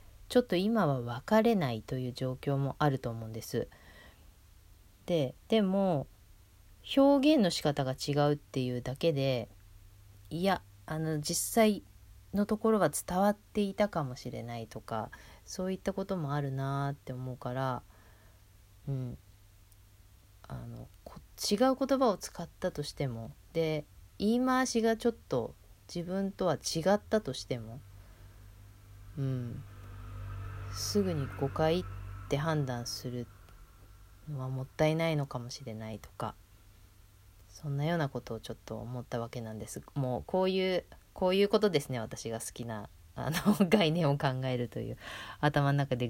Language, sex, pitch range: Japanese, female, 100-170 Hz